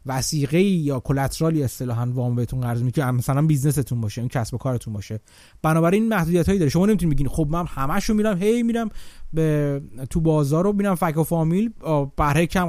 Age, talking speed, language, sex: 30-49, 205 wpm, Persian, male